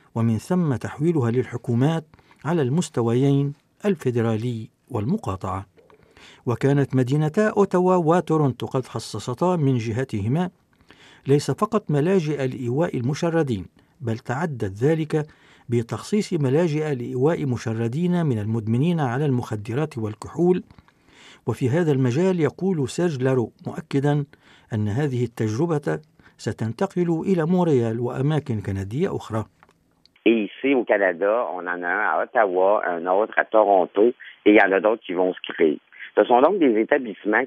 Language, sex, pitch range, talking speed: Arabic, male, 110-155 Hz, 120 wpm